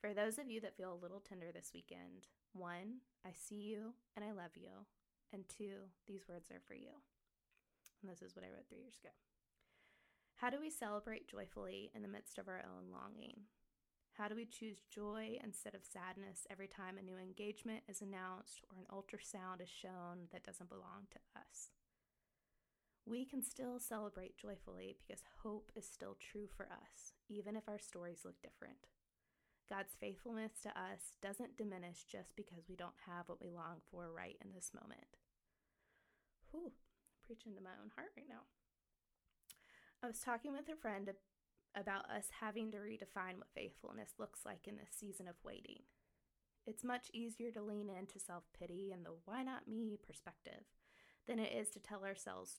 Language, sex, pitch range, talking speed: English, female, 180-220 Hz, 175 wpm